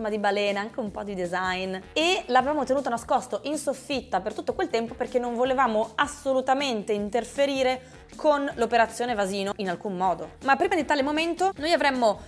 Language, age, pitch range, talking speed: Italian, 20-39, 210-275 Hz, 170 wpm